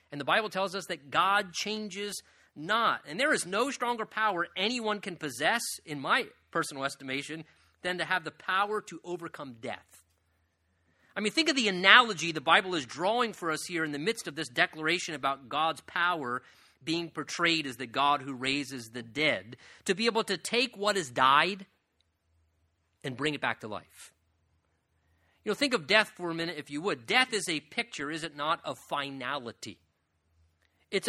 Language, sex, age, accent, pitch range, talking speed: English, male, 30-49, American, 135-215 Hz, 185 wpm